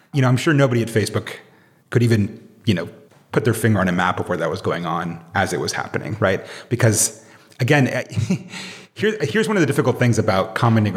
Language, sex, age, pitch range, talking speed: English, male, 30-49, 100-135 Hz, 215 wpm